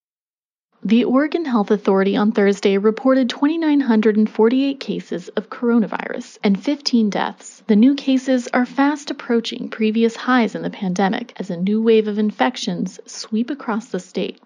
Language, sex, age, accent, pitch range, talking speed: English, female, 30-49, American, 215-265 Hz, 145 wpm